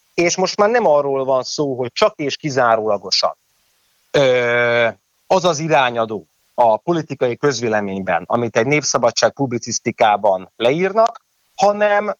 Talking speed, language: 115 wpm, Hungarian